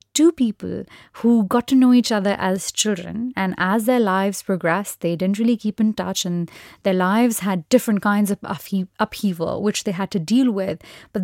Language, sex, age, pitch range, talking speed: Hindi, female, 30-49, 190-235 Hz, 200 wpm